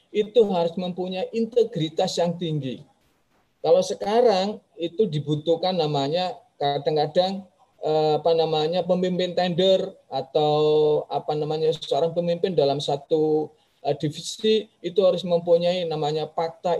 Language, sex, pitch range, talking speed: Indonesian, male, 160-210 Hz, 105 wpm